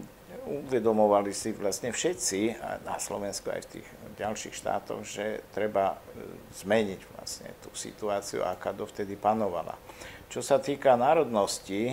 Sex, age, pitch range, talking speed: male, 50-69, 100-115 Hz, 120 wpm